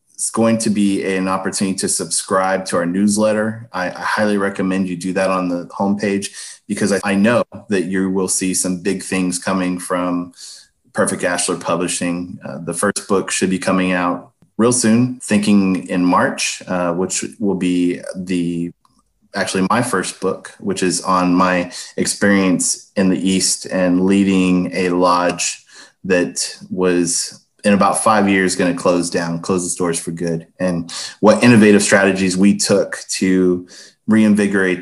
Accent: American